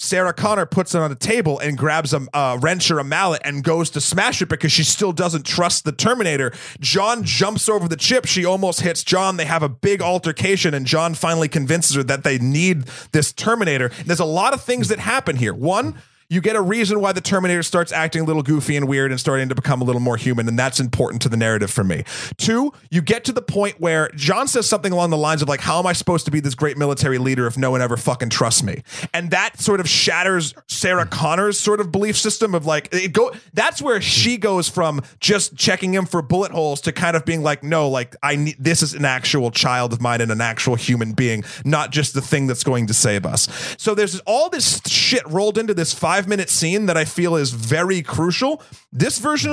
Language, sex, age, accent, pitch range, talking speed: English, male, 30-49, American, 140-190 Hz, 240 wpm